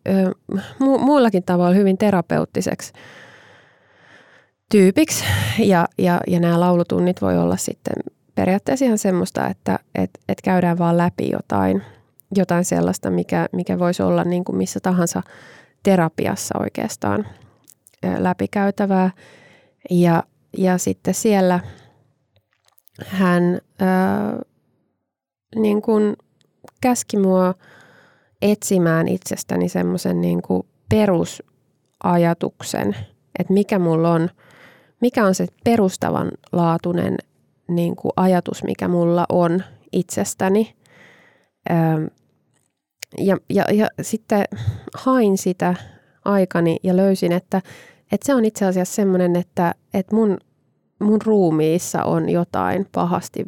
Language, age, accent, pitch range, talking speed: Finnish, 20-39, native, 130-195 Hz, 105 wpm